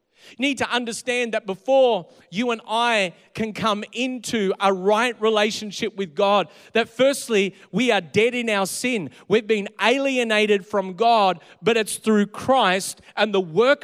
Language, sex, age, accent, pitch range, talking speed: English, male, 40-59, Australian, 195-235 Hz, 160 wpm